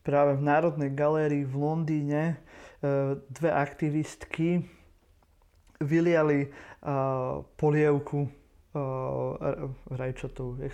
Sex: male